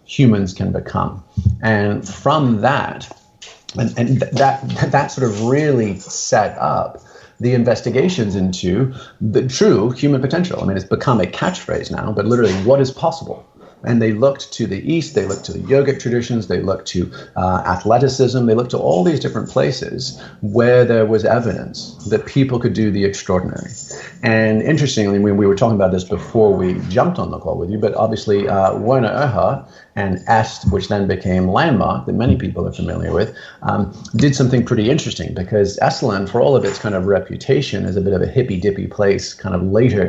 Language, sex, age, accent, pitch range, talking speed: English, male, 40-59, American, 100-130 Hz, 190 wpm